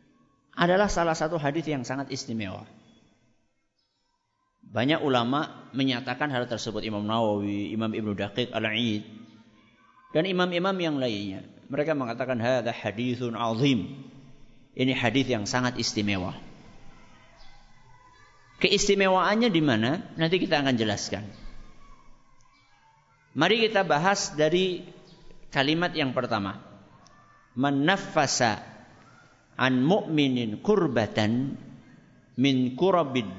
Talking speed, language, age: 95 wpm, Indonesian, 50-69